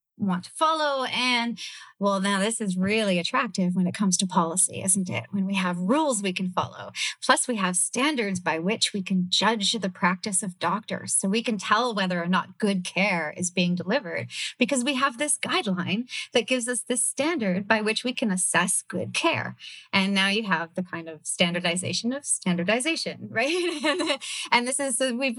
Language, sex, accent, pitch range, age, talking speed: English, female, American, 185-230 Hz, 30-49, 190 wpm